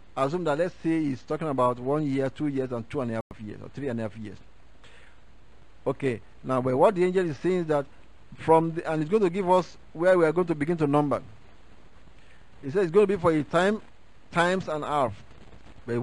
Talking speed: 230 wpm